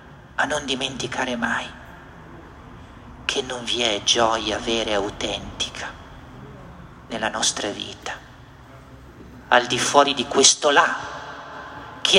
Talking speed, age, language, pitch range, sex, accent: 110 wpm, 50-69, Italian, 120-180 Hz, male, native